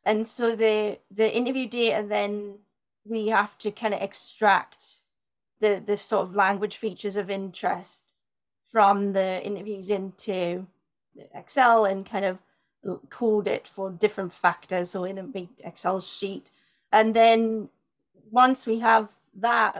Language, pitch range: English, 190-215 Hz